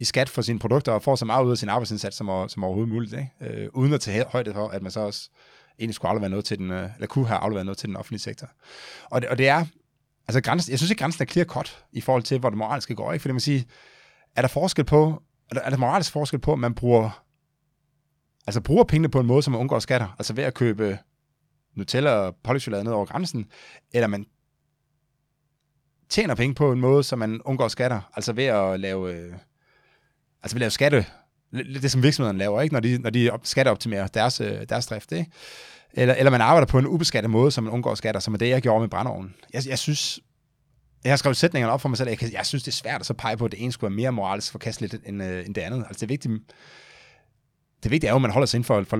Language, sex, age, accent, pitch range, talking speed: English, male, 30-49, Danish, 110-140 Hz, 250 wpm